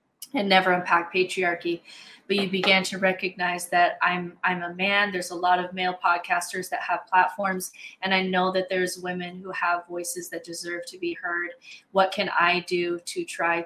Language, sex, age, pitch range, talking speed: English, female, 20-39, 175-190 Hz, 190 wpm